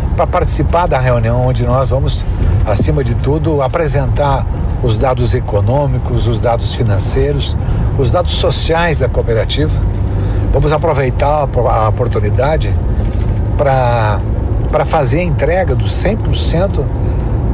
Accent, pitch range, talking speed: Brazilian, 100-120 Hz, 110 wpm